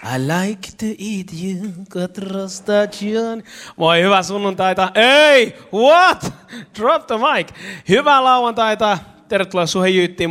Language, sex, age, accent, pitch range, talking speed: Finnish, male, 30-49, native, 135-195 Hz, 105 wpm